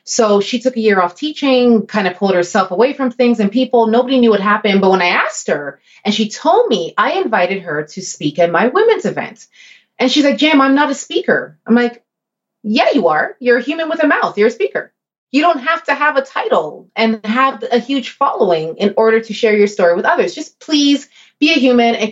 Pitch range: 210-280 Hz